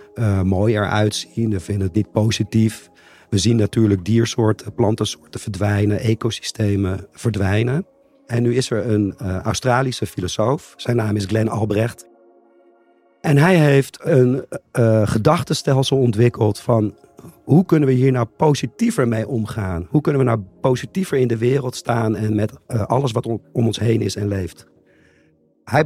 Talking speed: 160 wpm